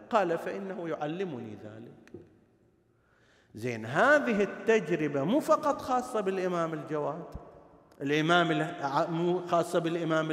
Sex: male